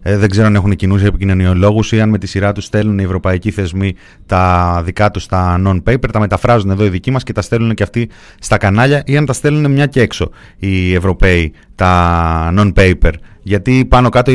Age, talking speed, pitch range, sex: 30-49, 205 wpm, 100-135 Hz, male